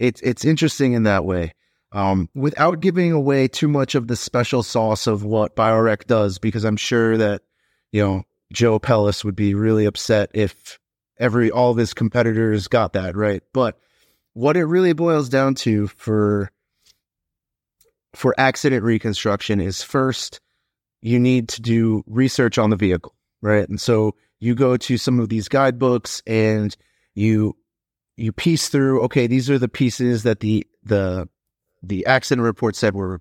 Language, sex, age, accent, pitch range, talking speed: English, male, 30-49, American, 100-125 Hz, 160 wpm